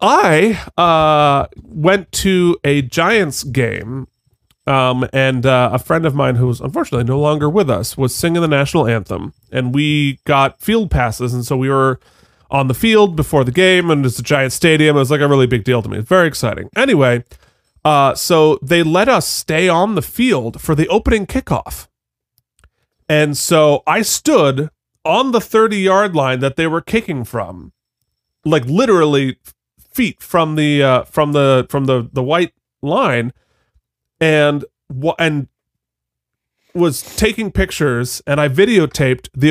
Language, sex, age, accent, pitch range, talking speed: English, male, 30-49, American, 130-175 Hz, 165 wpm